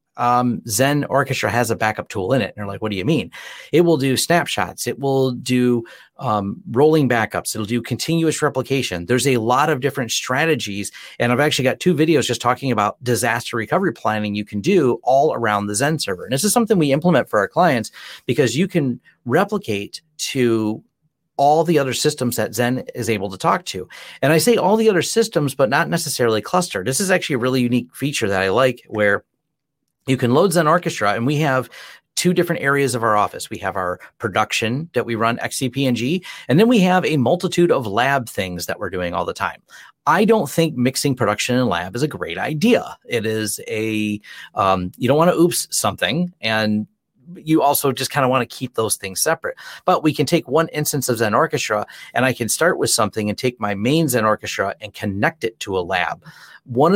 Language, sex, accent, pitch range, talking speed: English, male, American, 110-155 Hz, 210 wpm